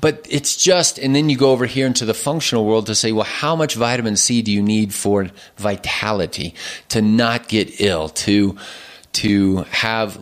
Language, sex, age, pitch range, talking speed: English, male, 30-49, 105-130 Hz, 190 wpm